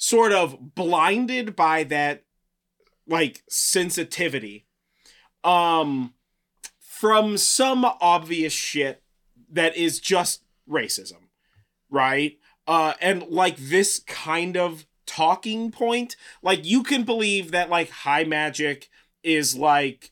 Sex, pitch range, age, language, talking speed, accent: male, 140-190 Hz, 30-49, English, 105 wpm, American